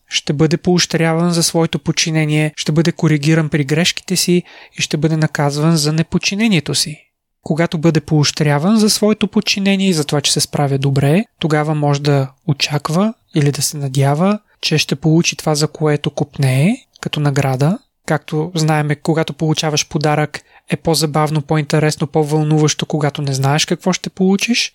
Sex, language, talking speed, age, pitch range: male, Bulgarian, 155 wpm, 20-39, 150-175 Hz